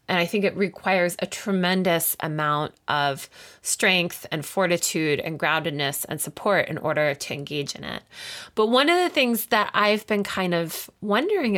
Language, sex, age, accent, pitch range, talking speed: English, female, 20-39, American, 160-210 Hz, 170 wpm